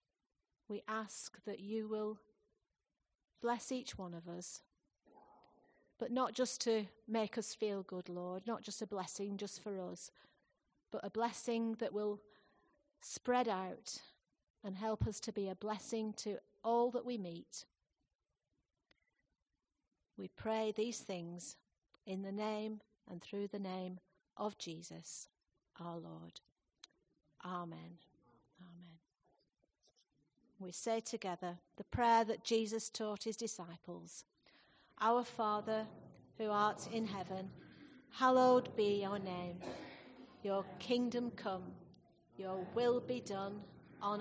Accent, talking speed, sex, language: British, 120 wpm, female, English